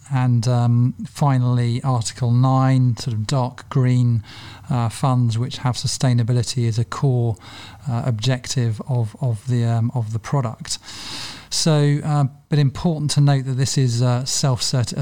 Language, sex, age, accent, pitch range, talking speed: English, male, 40-59, British, 120-130 Hz, 150 wpm